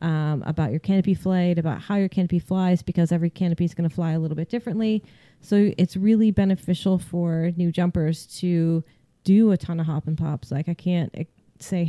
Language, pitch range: English, 160-190 Hz